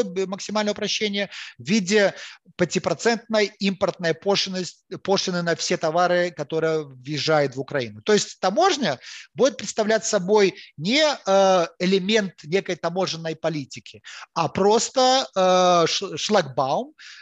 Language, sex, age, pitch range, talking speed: Ukrainian, male, 30-49, 160-215 Hz, 100 wpm